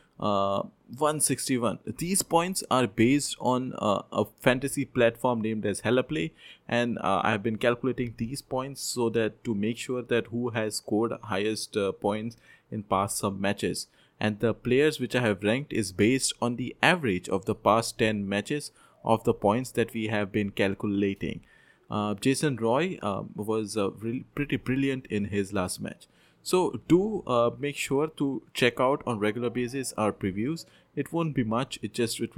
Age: 20-39